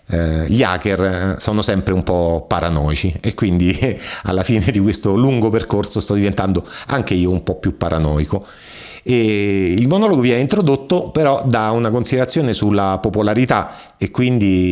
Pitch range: 90-115 Hz